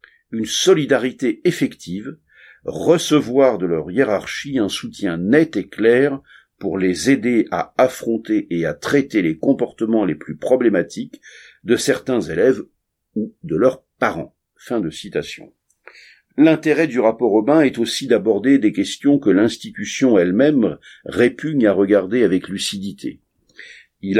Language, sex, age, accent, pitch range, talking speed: French, male, 50-69, French, 100-155 Hz, 135 wpm